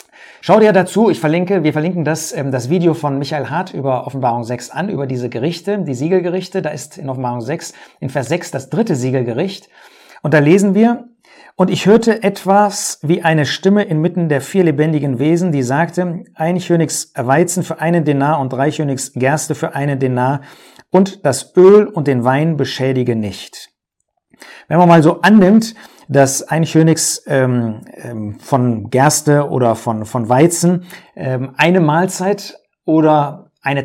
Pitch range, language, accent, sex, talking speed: 140-180 Hz, German, German, male, 165 wpm